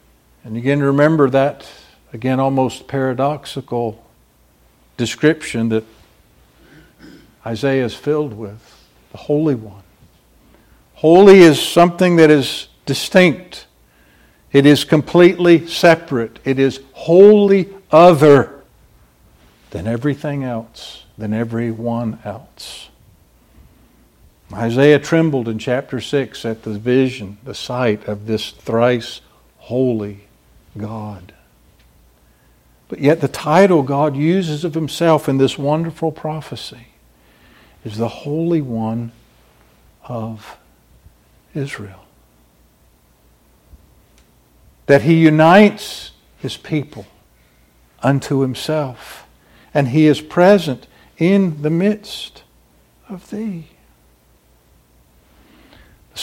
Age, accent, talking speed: 60-79, American, 90 wpm